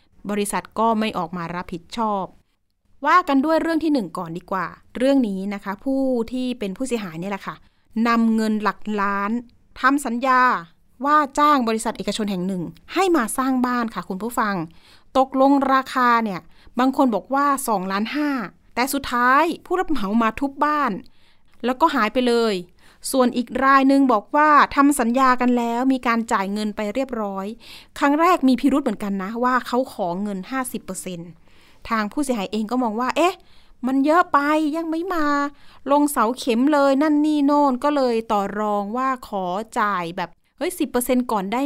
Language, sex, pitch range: Thai, female, 215-280 Hz